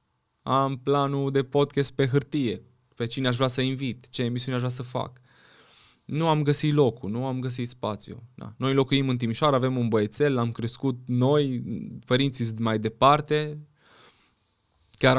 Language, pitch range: Romanian, 115-140 Hz